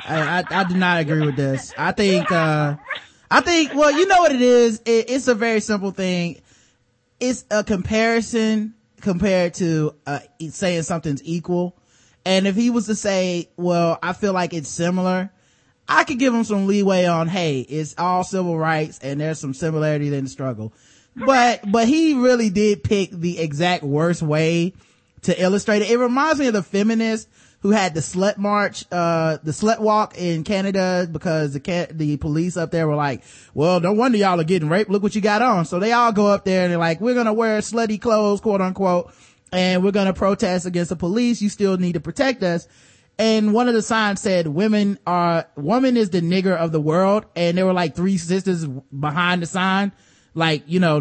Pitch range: 165-210 Hz